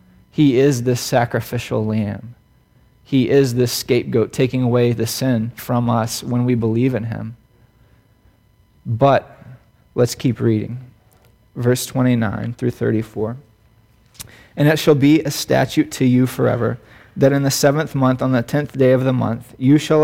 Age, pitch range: 30-49, 115-140 Hz